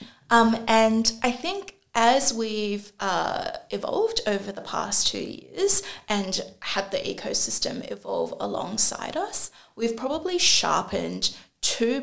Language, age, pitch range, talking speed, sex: English, 20-39, 200-265 Hz, 120 wpm, female